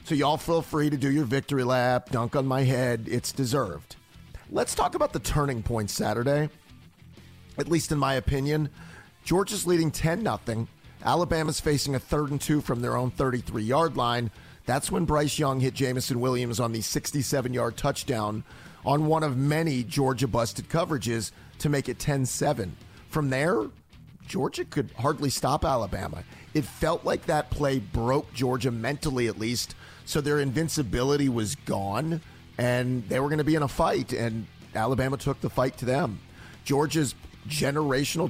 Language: English